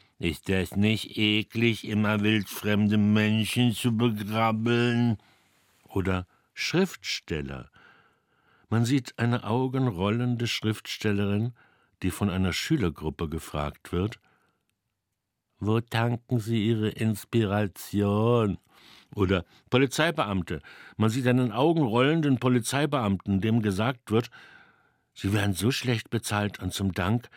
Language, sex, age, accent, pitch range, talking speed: German, male, 60-79, German, 95-120 Hz, 100 wpm